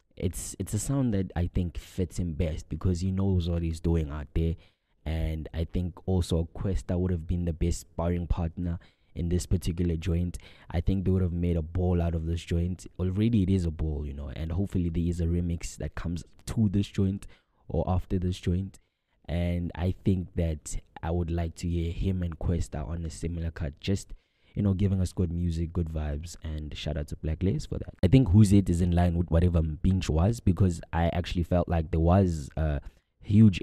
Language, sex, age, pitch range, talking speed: English, male, 20-39, 80-90 Hz, 215 wpm